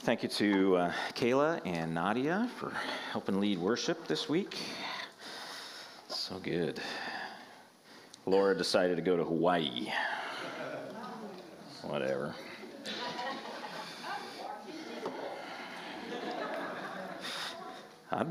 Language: English